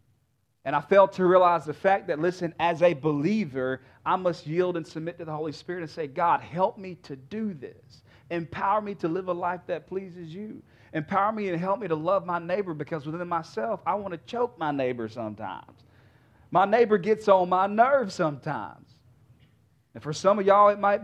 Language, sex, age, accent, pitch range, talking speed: English, male, 40-59, American, 120-185 Hz, 205 wpm